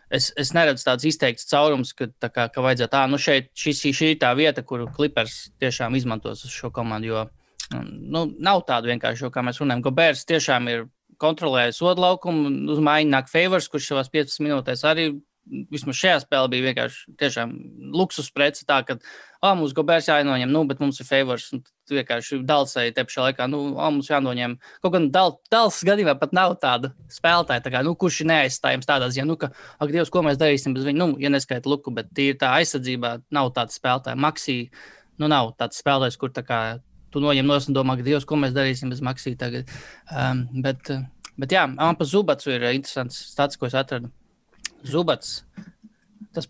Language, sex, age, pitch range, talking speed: English, male, 20-39, 130-155 Hz, 165 wpm